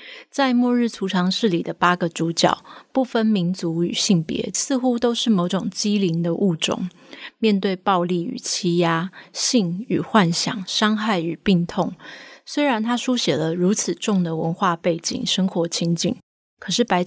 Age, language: 20-39, Chinese